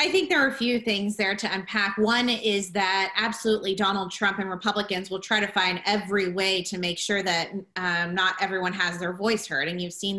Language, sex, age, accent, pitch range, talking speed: English, female, 20-39, American, 190-235 Hz, 225 wpm